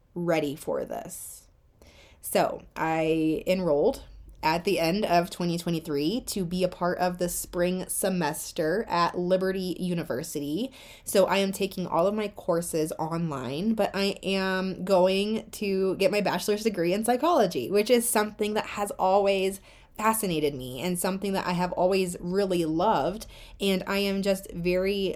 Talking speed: 150 wpm